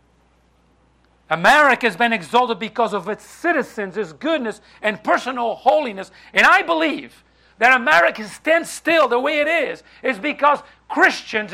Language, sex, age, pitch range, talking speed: English, male, 50-69, 210-305 Hz, 140 wpm